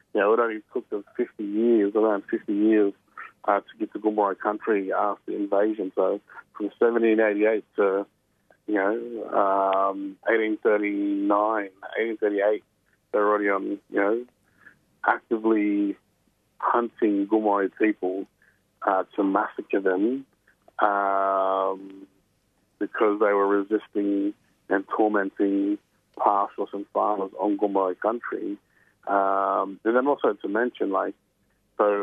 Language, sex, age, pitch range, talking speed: English, male, 30-49, 100-110 Hz, 120 wpm